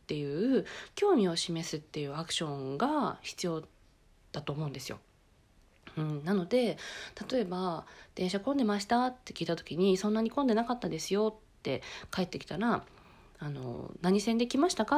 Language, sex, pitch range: Japanese, female, 160-225 Hz